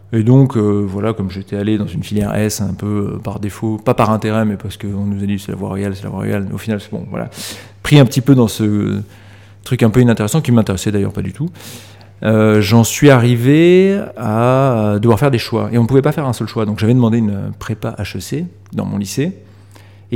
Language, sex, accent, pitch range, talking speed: French, male, French, 100-120 Hz, 255 wpm